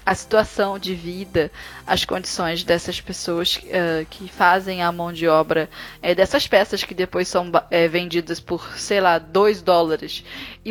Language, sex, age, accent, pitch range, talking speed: Portuguese, female, 10-29, Brazilian, 180-210 Hz, 145 wpm